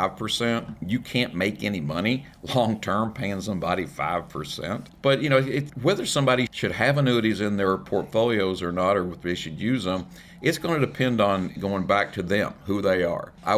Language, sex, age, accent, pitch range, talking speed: English, male, 50-69, American, 95-115 Hz, 195 wpm